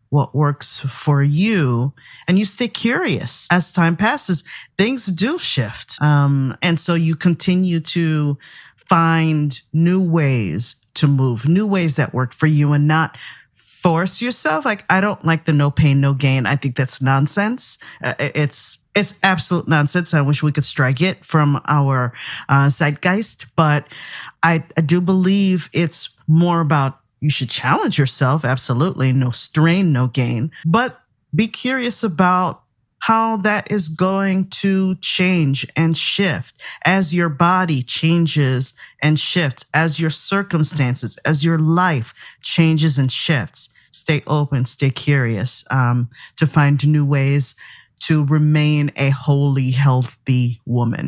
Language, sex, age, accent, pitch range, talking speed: English, male, 40-59, American, 135-175 Hz, 145 wpm